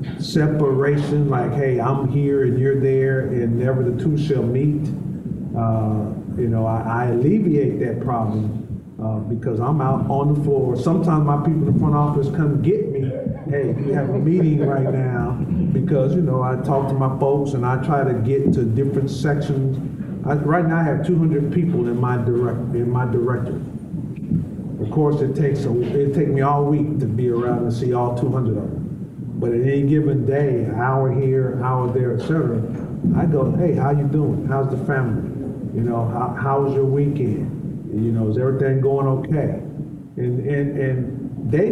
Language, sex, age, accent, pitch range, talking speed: English, male, 40-59, American, 125-145 Hz, 185 wpm